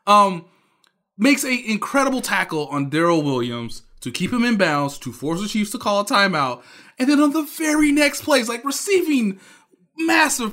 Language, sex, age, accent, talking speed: English, male, 20-39, American, 175 wpm